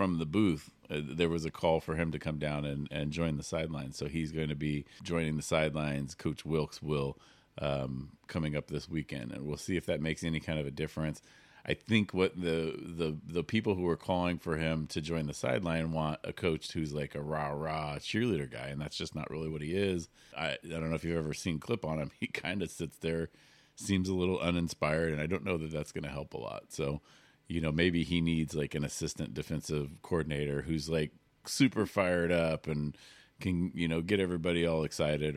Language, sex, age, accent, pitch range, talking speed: English, male, 40-59, American, 75-85 Hz, 225 wpm